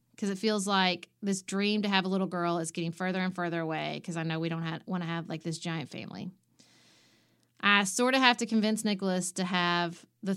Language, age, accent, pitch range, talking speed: English, 30-49, American, 165-200 Hz, 225 wpm